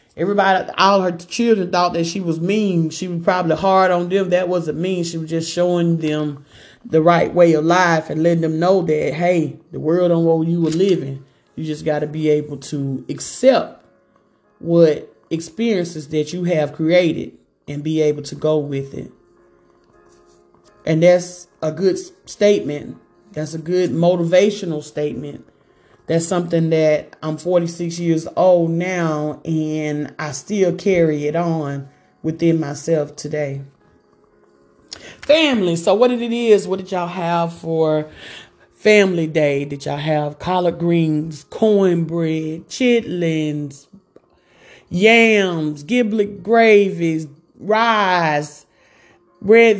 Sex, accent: male, American